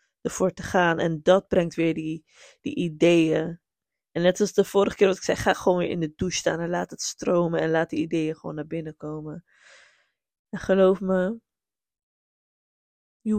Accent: Dutch